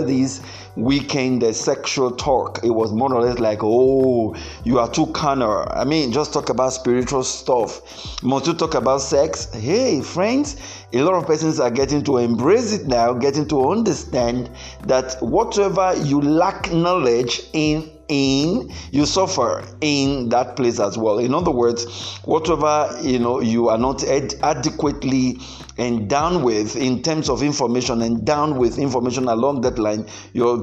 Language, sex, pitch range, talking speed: English, male, 120-150 Hz, 165 wpm